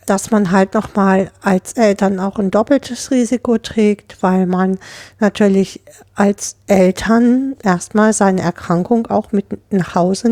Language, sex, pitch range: German, female, 185-215 Hz